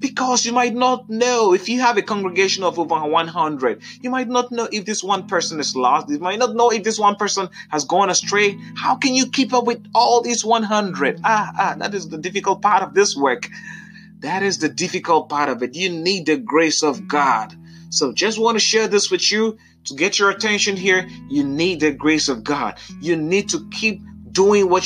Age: 30-49